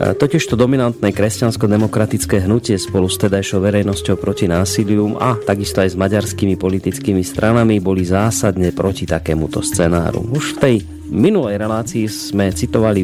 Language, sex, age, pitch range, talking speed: Slovak, male, 30-49, 90-110 Hz, 135 wpm